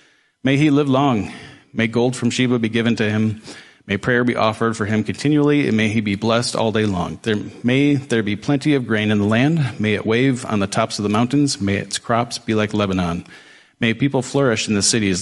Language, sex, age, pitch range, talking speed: English, male, 40-59, 100-125 Hz, 225 wpm